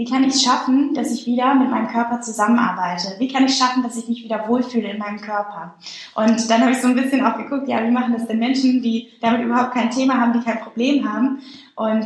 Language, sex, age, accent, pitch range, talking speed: German, female, 10-29, German, 215-255 Hz, 245 wpm